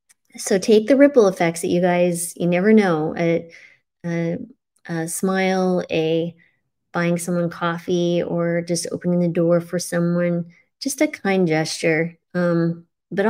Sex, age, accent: female, 30-49, American